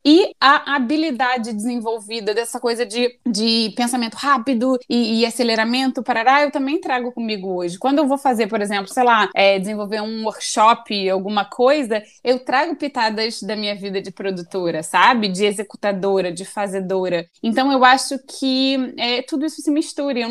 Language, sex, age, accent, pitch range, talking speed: Portuguese, female, 20-39, Brazilian, 215-275 Hz, 155 wpm